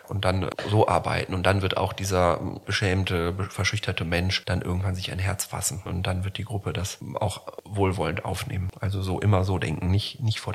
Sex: male